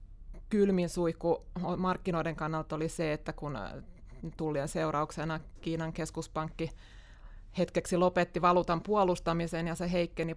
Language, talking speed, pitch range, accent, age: Finnish, 110 wpm, 150-170 Hz, native, 20-39